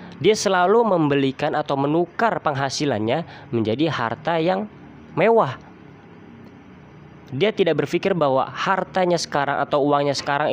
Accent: native